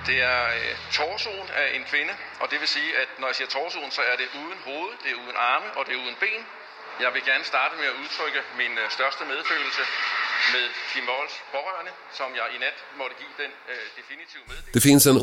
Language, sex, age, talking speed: Swedish, male, 50-69, 220 wpm